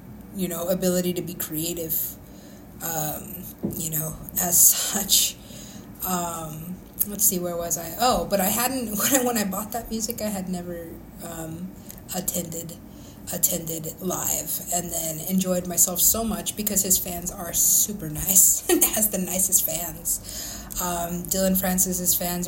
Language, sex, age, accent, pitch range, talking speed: English, female, 20-39, American, 170-190 Hz, 150 wpm